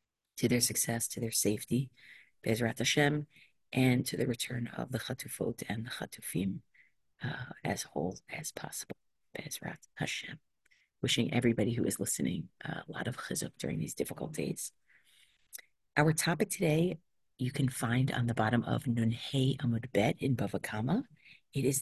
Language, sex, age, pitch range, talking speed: English, female, 40-59, 120-150 Hz, 150 wpm